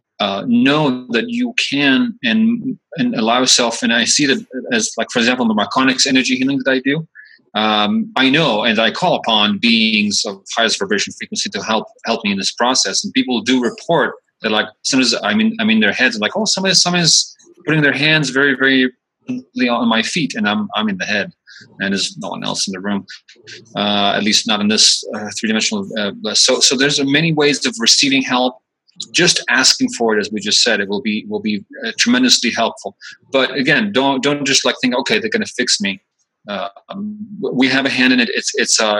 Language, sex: English, male